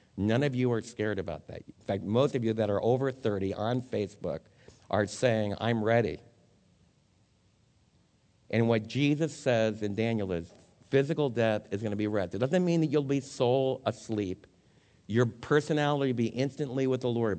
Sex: male